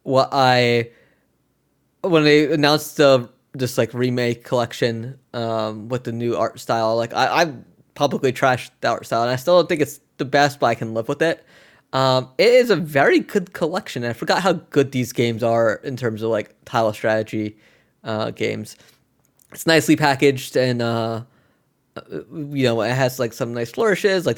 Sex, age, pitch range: male, 20-39, 115-155 Hz